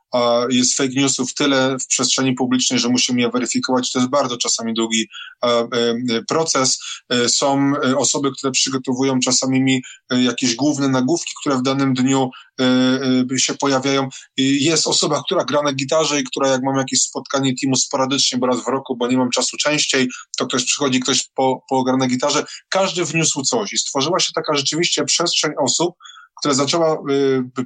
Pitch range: 130-145 Hz